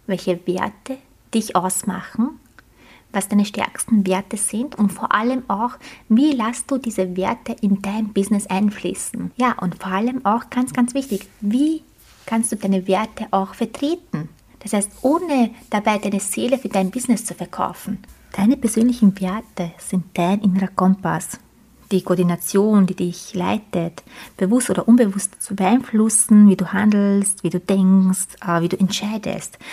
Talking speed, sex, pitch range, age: 150 wpm, female, 185-220 Hz, 20-39